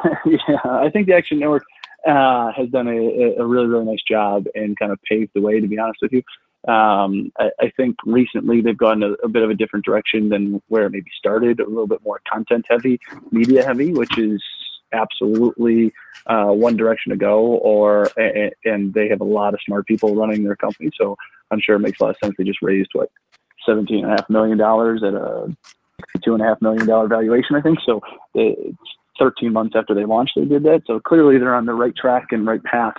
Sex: male